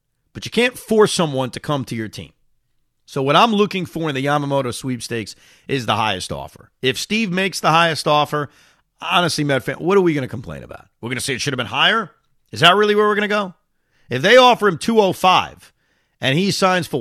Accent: American